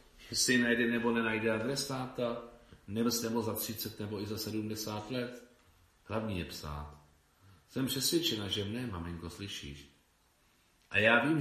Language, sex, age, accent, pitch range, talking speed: Czech, male, 40-59, native, 85-120 Hz, 130 wpm